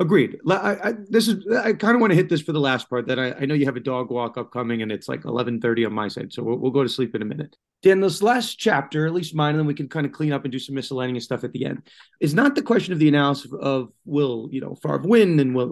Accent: American